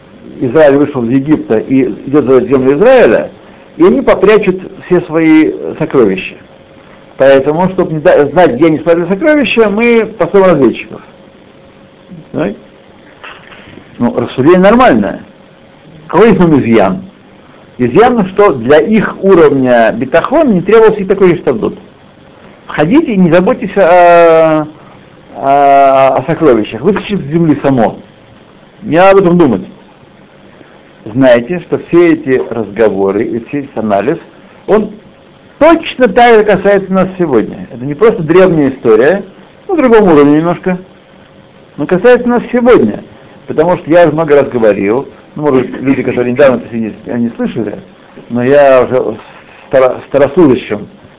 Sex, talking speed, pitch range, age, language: male, 130 wpm, 130-200 Hz, 60-79, Russian